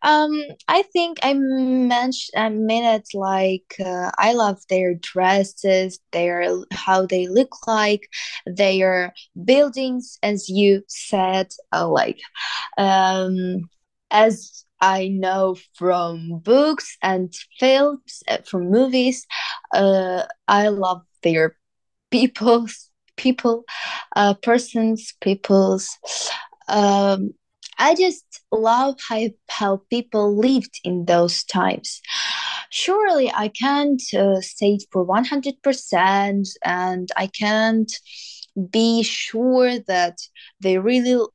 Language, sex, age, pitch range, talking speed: English, female, 20-39, 190-245 Hz, 105 wpm